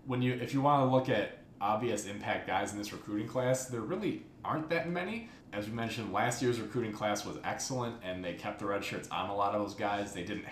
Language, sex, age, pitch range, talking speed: English, male, 20-39, 90-115 Hz, 245 wpm